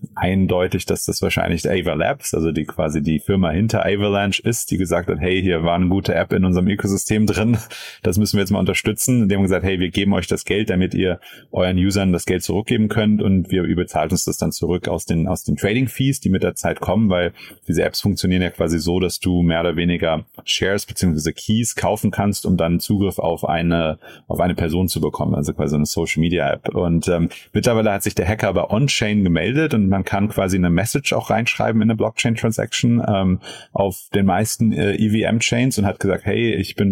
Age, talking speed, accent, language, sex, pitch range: 30-49, 220 wpm, German, German, male, 90-110 Hz